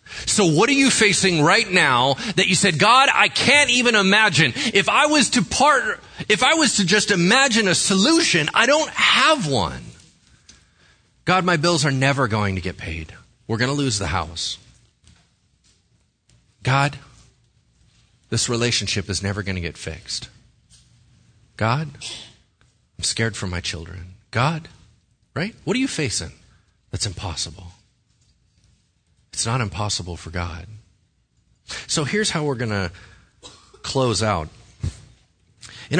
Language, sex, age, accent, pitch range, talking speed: English, male, 30-49, American, 95-145 Hz, 140 wpm